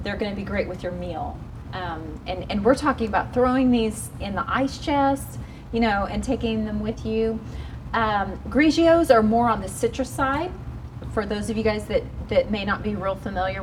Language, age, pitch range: English, 30-49, 185-245 Hz